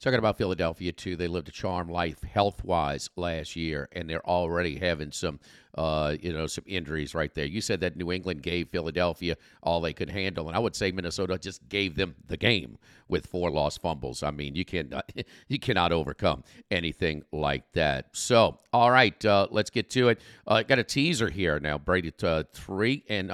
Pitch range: 90-120 Hz